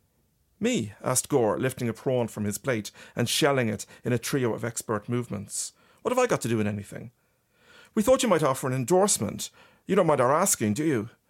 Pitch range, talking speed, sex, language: 115-150 Hz, 210 wpm, male, English